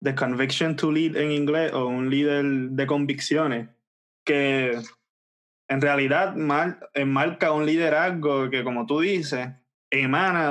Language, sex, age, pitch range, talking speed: Spanish, male, 20-39, 130-155 Hz, 125 wpm